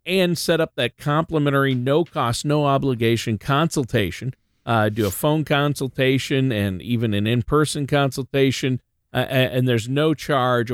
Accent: American